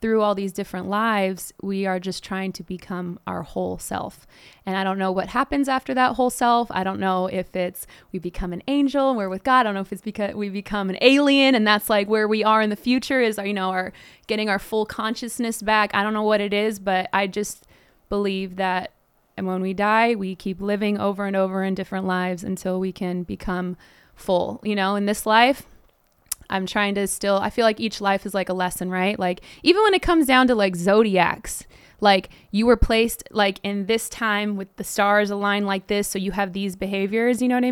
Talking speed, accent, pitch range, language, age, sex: 225 wpm, American, 190-220 Hz, English, 20-39, female